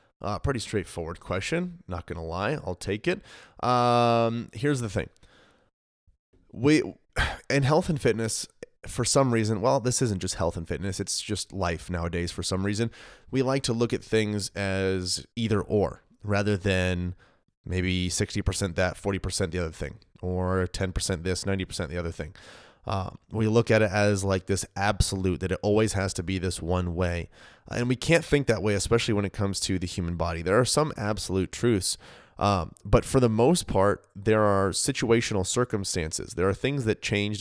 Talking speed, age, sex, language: 185 wpm, 30-49, male, English